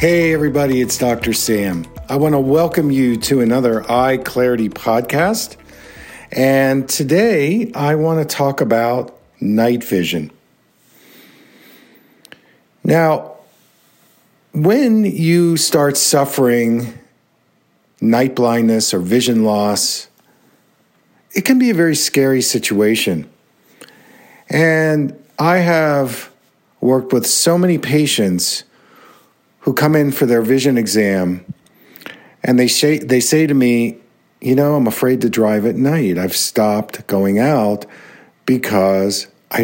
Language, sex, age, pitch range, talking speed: English, male, 50-69, 115-150 Hz, 115 wpm